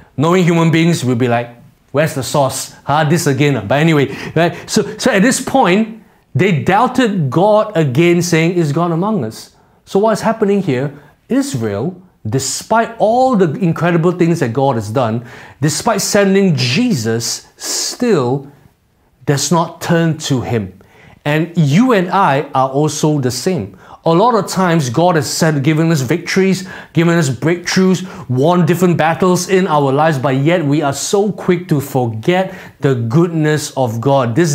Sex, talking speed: male, 160 wpm